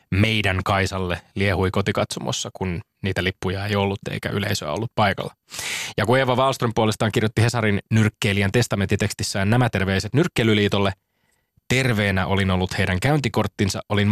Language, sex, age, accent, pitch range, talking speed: Finnish, male, 20-39, native, 95-120 Hz, 130 wpm